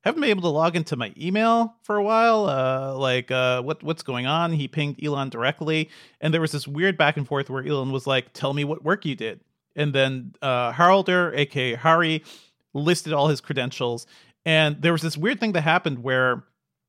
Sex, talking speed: male, 210 wpm